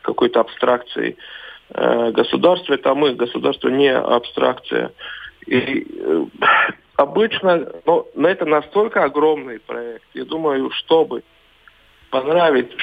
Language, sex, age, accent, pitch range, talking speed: Russian, male, 40-59, native, 125-170 Hz, 95 wpm